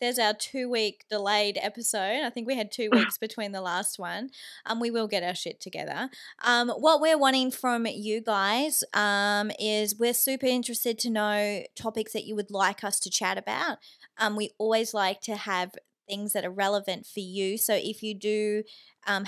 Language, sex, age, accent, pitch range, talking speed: English, female, 20-39, Australian, 195-225 Hz, 195 wpm